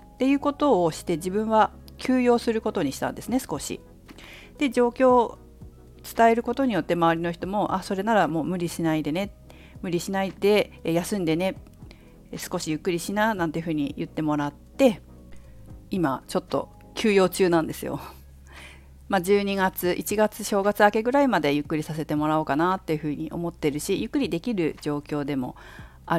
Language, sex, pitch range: Japanese, female, 150-210 Hz